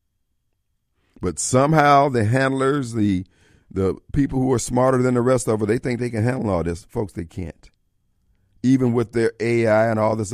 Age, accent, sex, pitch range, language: 50-69, American, male, 95-135 Hz, Japanese